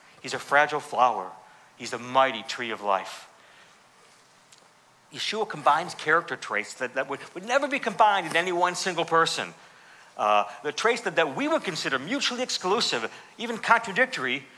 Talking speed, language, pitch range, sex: 155 wpm, English, 130-185 Hz, male